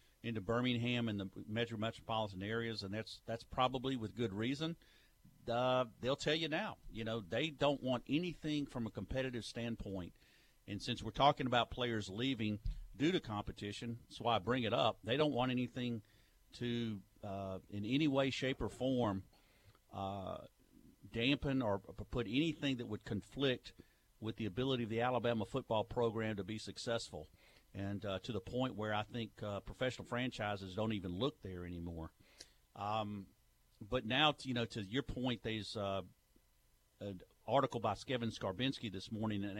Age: 50-69